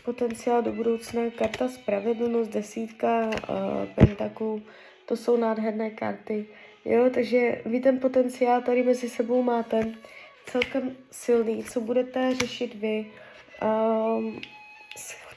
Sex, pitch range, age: female, 220-250 Hz, 20-39